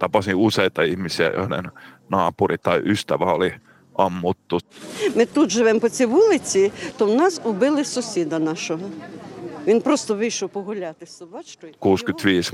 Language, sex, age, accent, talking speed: Finnish, male, 50-69, native, 80 wpm